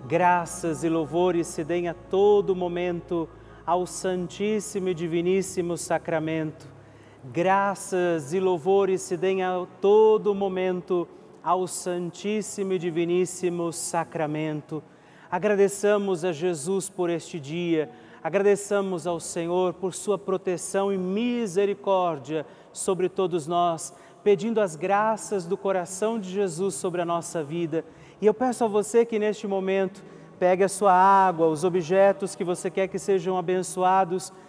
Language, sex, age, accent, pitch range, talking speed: Portuguese, male, 40-59, Brazilian, 170-195 Hz, 130 wpm